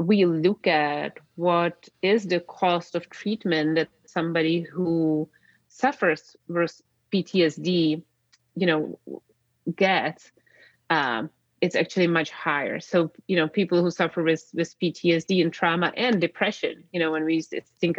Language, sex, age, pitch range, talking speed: English, female, 30-49, 160-185 Hz, 135 wpm